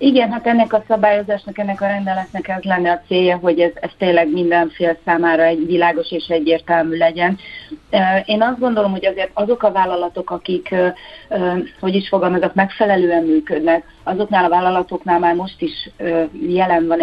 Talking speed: 160 wpm